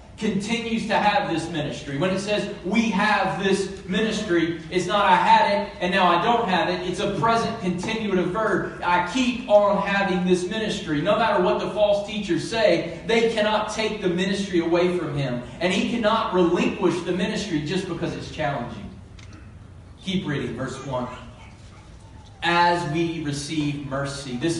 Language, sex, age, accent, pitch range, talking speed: English, male, 40-59, American, 165-200 Hz, 165 wpm